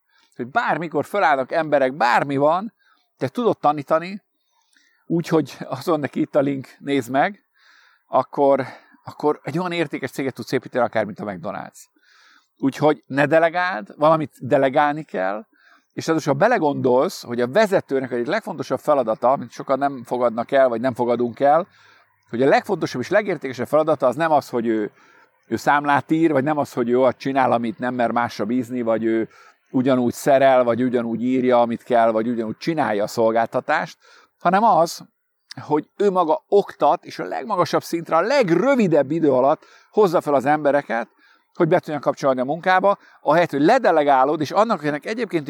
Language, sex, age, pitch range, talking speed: Hungarian, male, 50-69, 125-165 Hz, 160 wpm